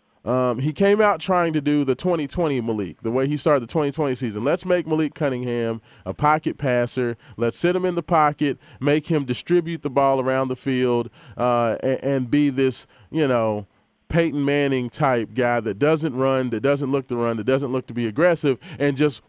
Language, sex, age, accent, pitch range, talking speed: English, male, 20-39, American, 130-170 Hz, 200 wpm